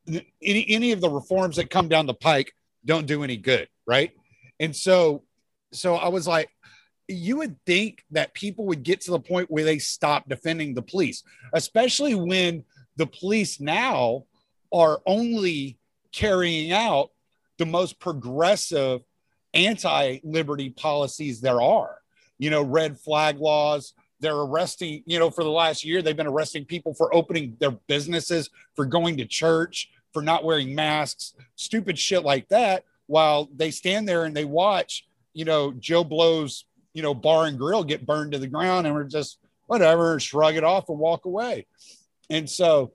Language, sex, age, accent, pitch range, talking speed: English, male, 40-59, American, 145-175 Hz, 165 wpm